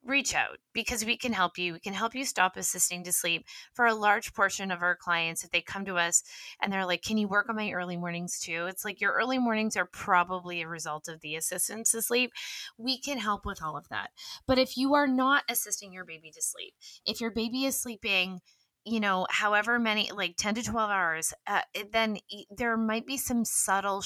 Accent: American